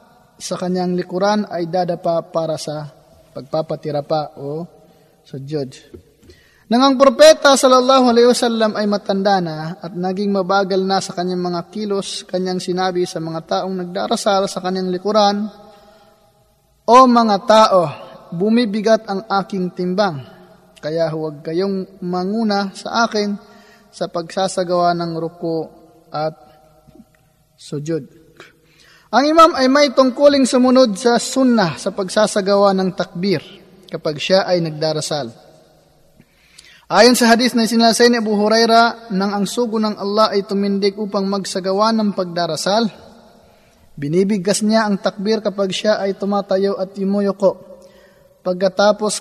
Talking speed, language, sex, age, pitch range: 125 wpm, Filipino, male, 20-39, 175-215 Hz